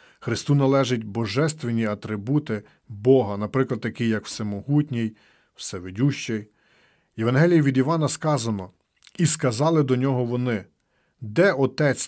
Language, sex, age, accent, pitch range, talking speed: Ukrainian, male, 40-59, native, 110-145 Hz, 105 wpm